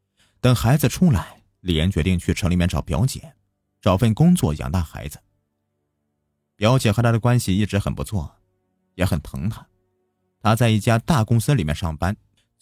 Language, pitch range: Chinese, 85-110 Hz